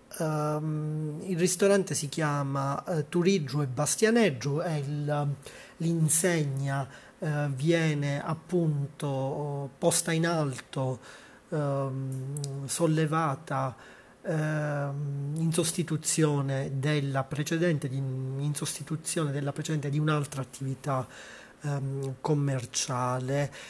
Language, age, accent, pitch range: Italian, 30-49, native, 135-160 Hz